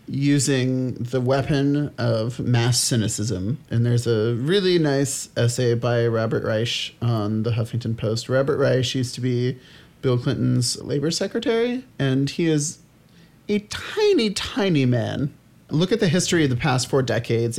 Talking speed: 150 wpm